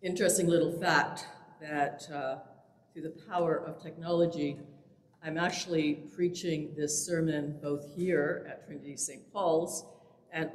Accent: American